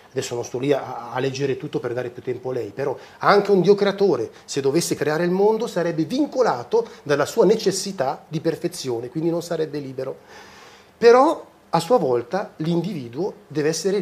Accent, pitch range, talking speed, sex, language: native, 135-190 Hz, 175 wpm, male, Italian